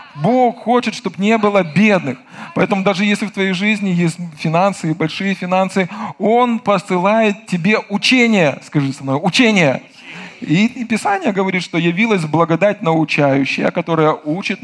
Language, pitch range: Russian, 170-215 Hz